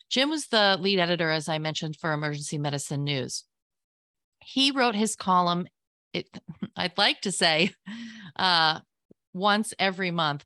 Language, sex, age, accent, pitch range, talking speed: English, female, 30-49, American, 155-200 Hz, 140 wpm